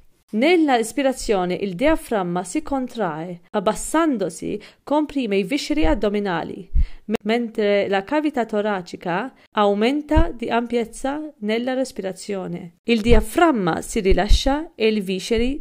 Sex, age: female, 40-59